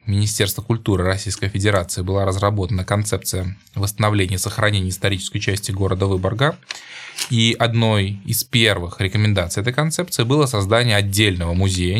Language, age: Russian, 20-39